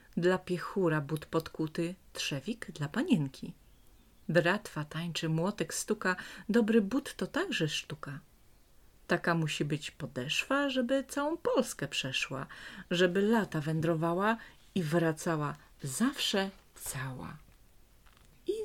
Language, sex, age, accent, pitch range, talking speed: Polish, female, 40-59, native, 150-220 Hz, 105 wpm